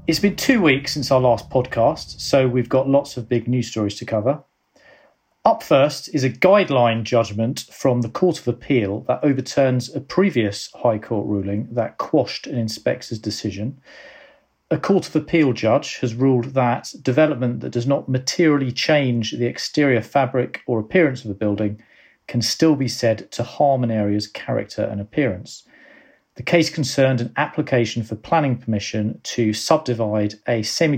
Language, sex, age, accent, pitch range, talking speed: English, male, 40-59, British, 110-140 Hz, 165 wpm